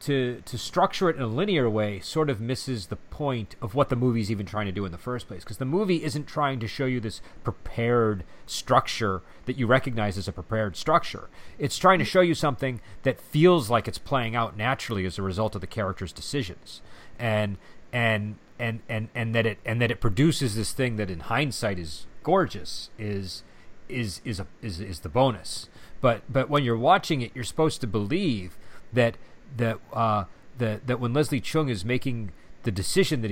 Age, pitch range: 40-59, 100-130 Hz